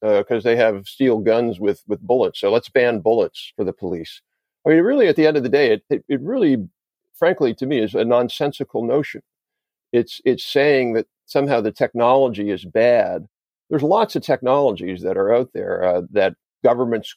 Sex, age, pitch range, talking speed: male, 50-69, 110-150 Hz, 195 wpm